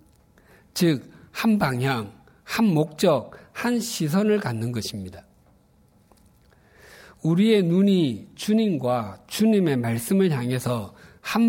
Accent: native